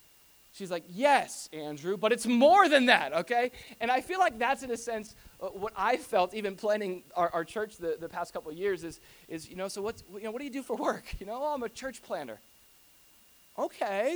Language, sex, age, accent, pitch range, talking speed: English, male, 20-39, American, 170-235 Hz, 230 wpm